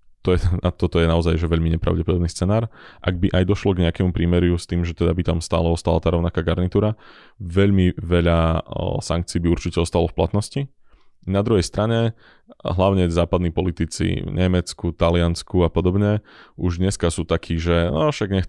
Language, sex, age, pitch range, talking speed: Slovak, male, 20-39, 85-95 Hz, 170 wpm